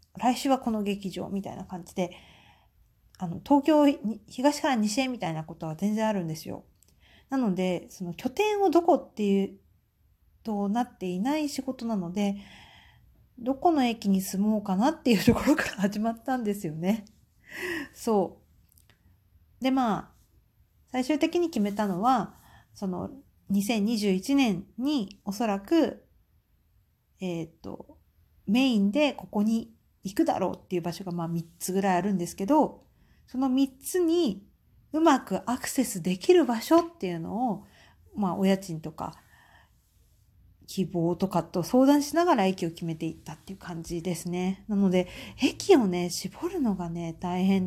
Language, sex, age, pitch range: Japanese, female, 50-69, 170-250 Hz